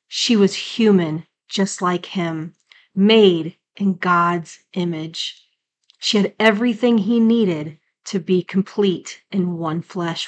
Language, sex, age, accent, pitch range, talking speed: English, female, 30-49, American, 175-210 Hz, 125 wpm